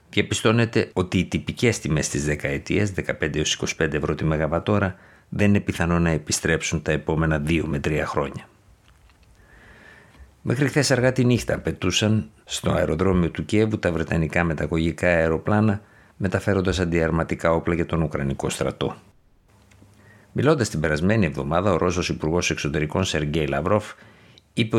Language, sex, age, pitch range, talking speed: Greek, male, 50-69, 80-100 Hz, 130 wpm